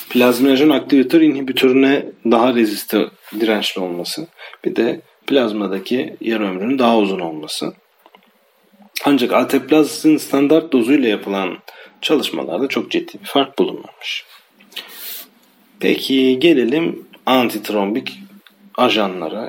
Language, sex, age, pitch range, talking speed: Turkish, male, 40-59, 105-150 Hz, 90 wpm